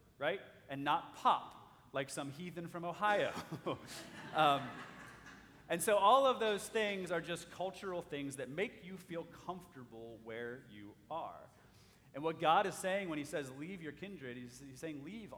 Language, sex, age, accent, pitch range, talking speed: English, male, 30-49, American, 120-165 Hz, 170 wpm